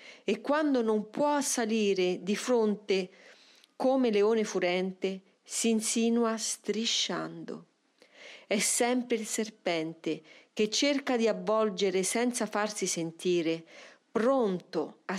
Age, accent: 40-59, native